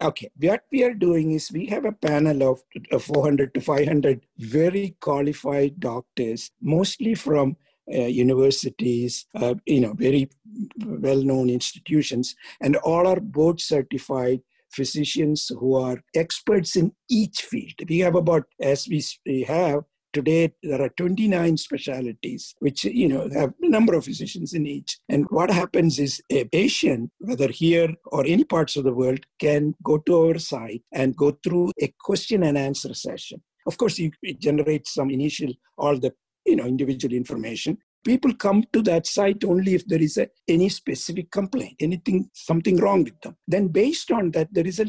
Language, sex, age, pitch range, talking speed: English, male, 60-79, 135-185 Hz, 165 wpm